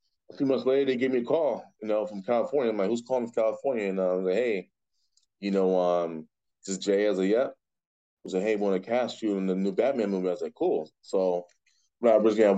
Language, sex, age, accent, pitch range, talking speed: English, male, 20-39, American, 90-100 Hz, 265 wpm